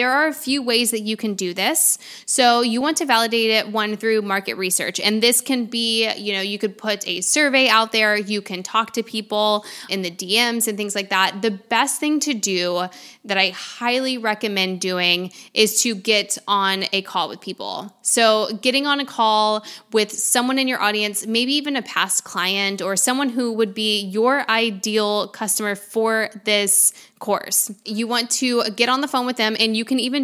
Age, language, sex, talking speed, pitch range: 10-29, English, female, 205 wpm, 195-230 Hz